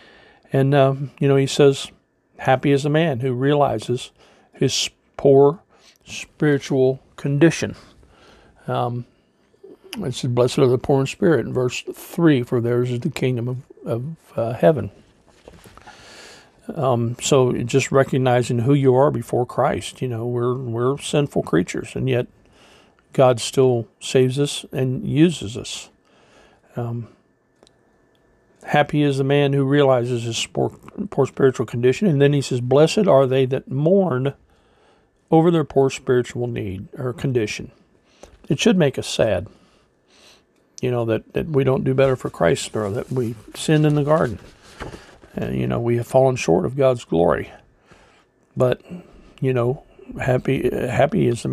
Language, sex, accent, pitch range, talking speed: English, male, American, 125-145 Hz, 145 wpm